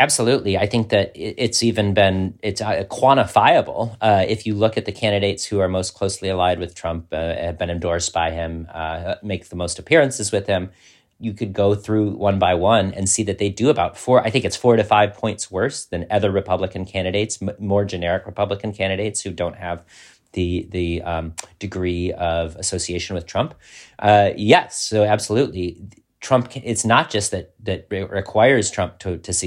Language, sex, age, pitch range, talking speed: English, male, 40-59, 90-105 Hz, 185 wpm